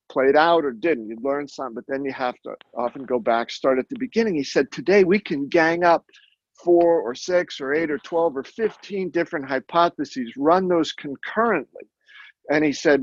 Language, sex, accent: English, male, American